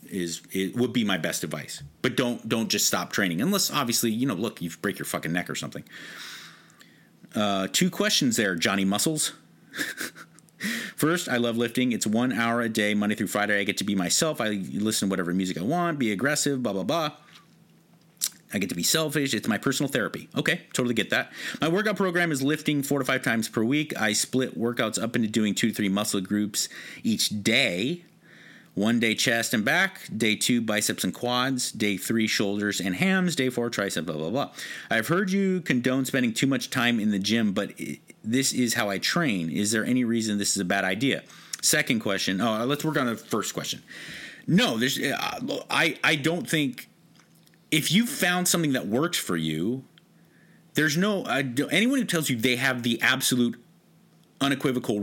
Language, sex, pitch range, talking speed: English, male, 105-145 Hz, 195 wpm